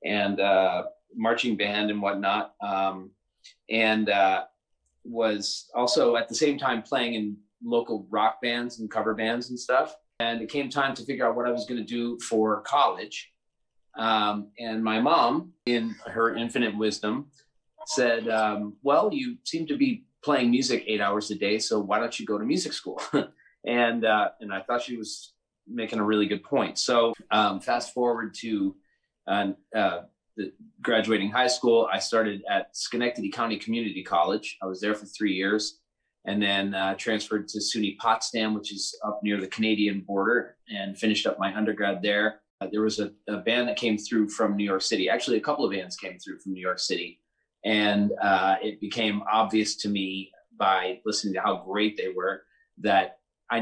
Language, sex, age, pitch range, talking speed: English, male, 30-49, 100-115 Hz, 185 wpm